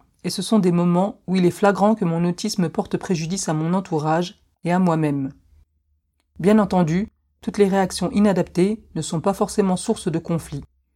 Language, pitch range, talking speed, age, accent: French, 165-195 Hz, 180 wpm, 40-59, French